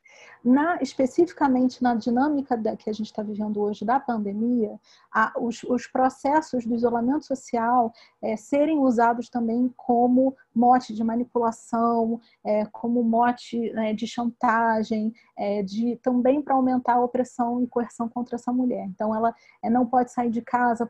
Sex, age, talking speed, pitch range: female, 30-49, 130 wpm, 225-255 Hz